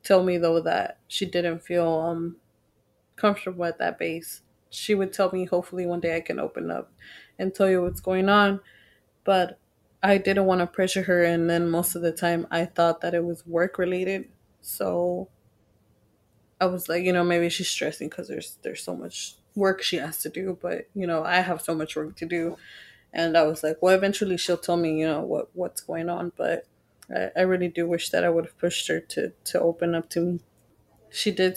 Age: 20-39